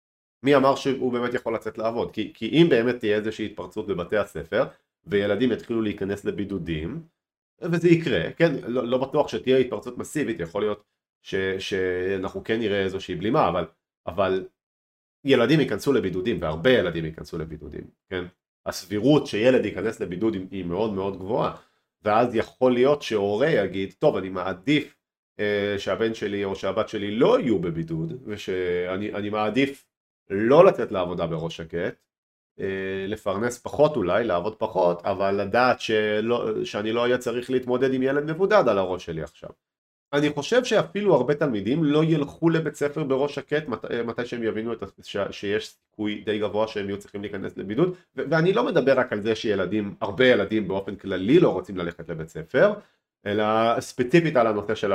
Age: 40-59